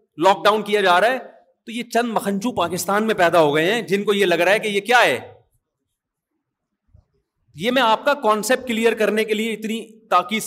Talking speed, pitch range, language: 210 wpm, 200-245 Hz, Urdu